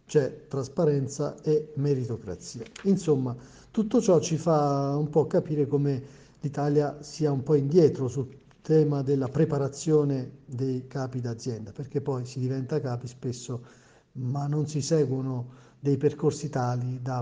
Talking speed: 140 wpm